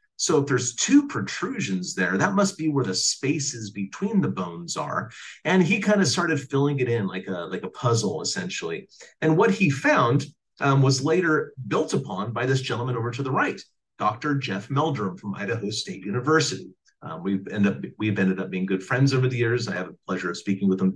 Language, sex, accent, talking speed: English, male, American, 205 wpm